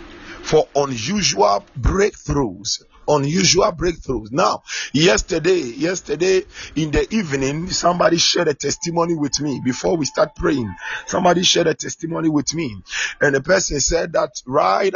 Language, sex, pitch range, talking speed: English, male, 145-205 Hz, 130 wpm